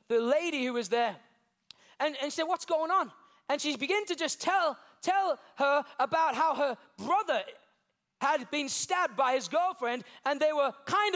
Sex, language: male, English